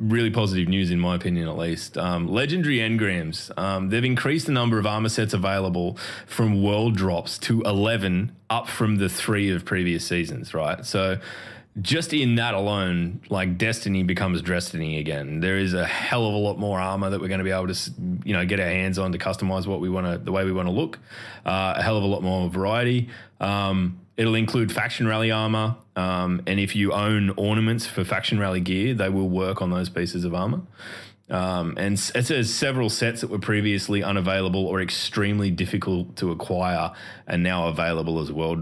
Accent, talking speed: Australian, 200 wpm